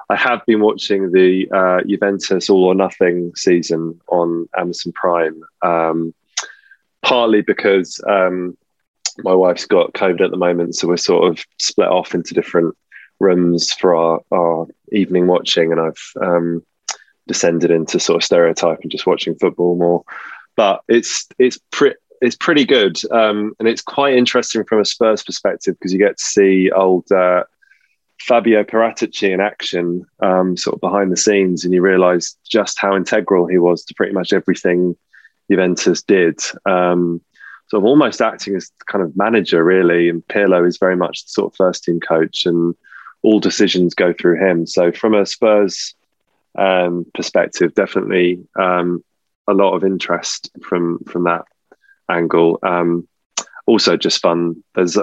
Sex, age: male, 20-39